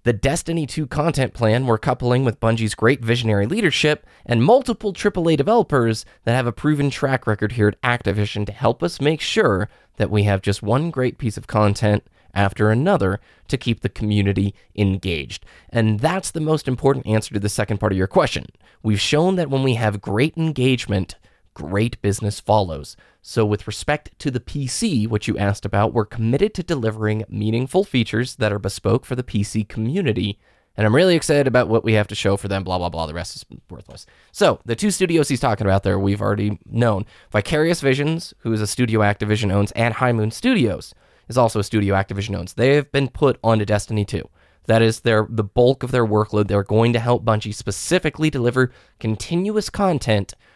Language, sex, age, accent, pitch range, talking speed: English, male, 20-39, American, 105-135 Hz, 195 wpm